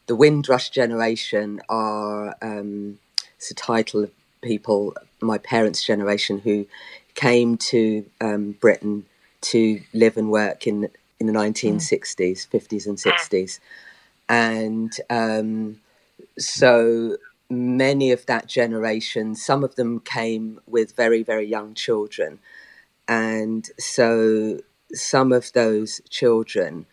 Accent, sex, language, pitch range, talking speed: British, female, English, 105-120 Hz, 115 wpm